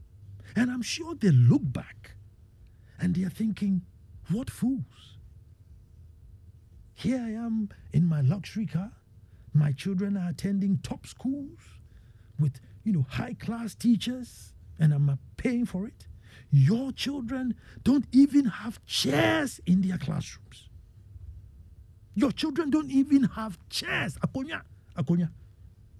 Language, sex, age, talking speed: English, male, 50-69, 115 wpm